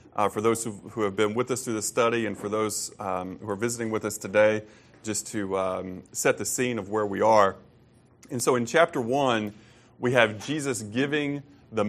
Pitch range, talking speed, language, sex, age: 105-125 Hz, 205 wpm, English, male, 30-49